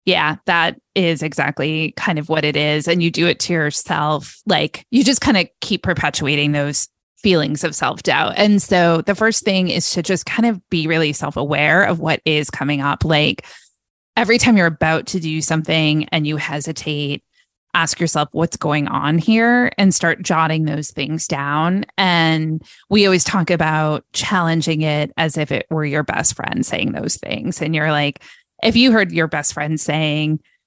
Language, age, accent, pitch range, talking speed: English, 20-39, American, 150-180 Hz, 185 wpm